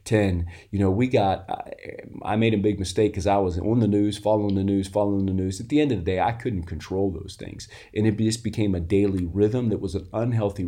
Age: 30-49